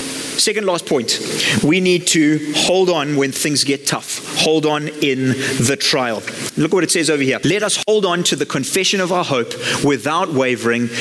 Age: 30-49